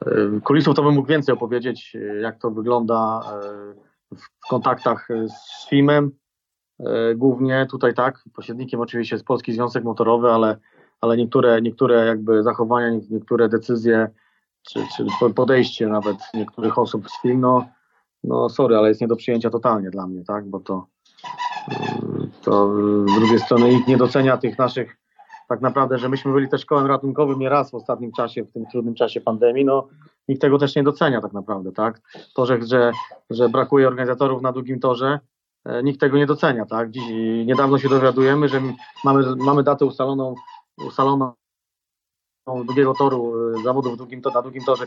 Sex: male